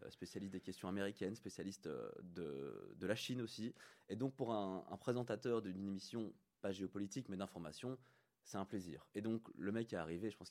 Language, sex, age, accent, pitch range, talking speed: French, male, 20-39, French, 90-120 Hz, 190 wpm